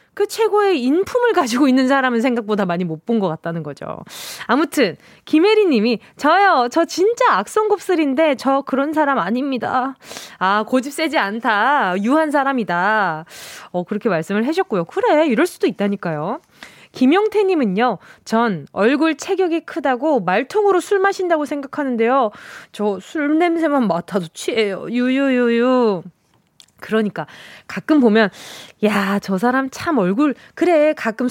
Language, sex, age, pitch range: Korean, female, 20-39, 215-325 Hz